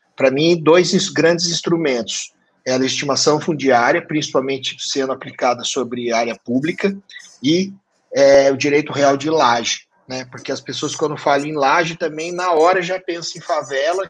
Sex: male